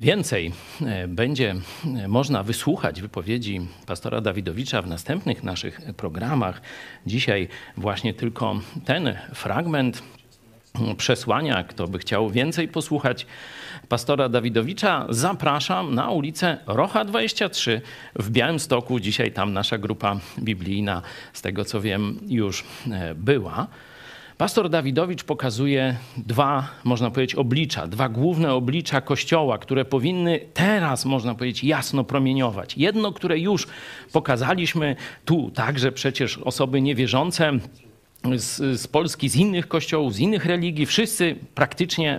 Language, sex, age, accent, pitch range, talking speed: Polish, male, 50-69, native, 115-160 Hz, 115 wpm